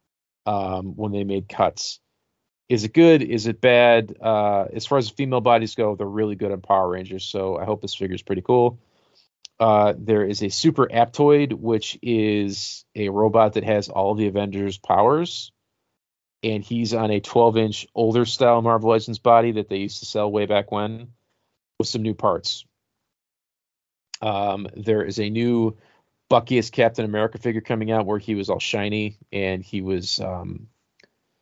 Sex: male